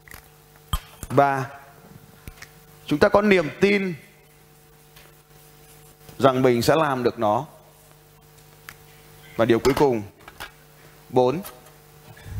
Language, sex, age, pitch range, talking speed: Vietnamese, male, 20-39, 140-195 Hz, 80 wpm